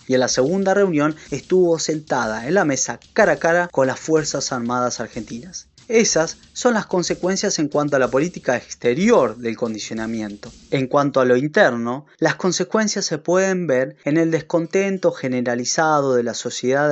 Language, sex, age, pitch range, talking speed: Spanish, male, 20-39, 130-180 Hz, 165 wpm